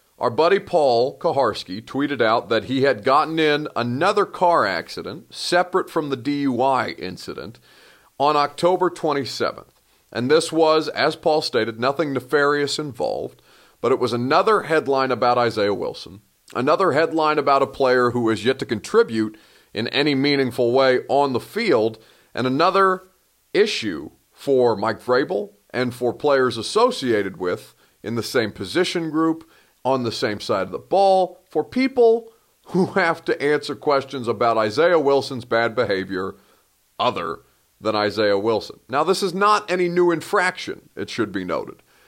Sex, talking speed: male, 150 wpm